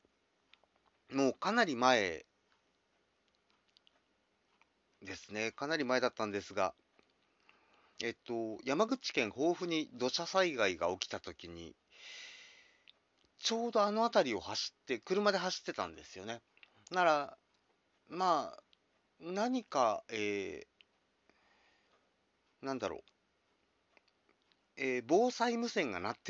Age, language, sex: 40-59, Japanese, male